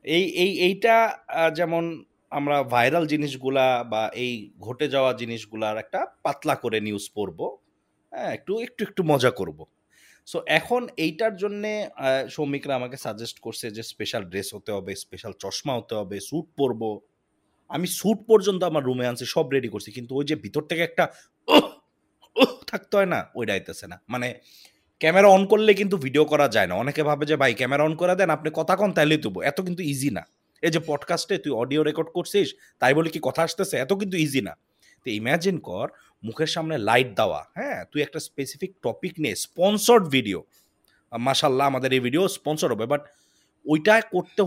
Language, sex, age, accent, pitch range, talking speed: Bengali, male, 30-49, native, 125-180 Hz, 175 wpm